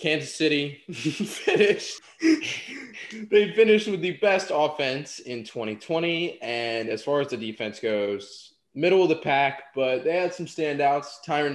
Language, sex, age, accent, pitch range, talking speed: English, male, 20-39, American, 110-160 Hz, 145 wpm